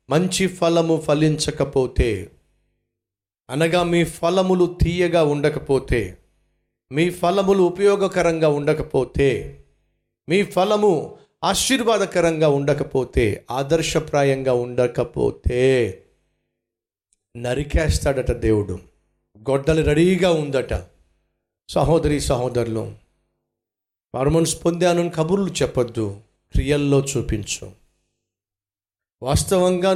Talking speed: 65 wpm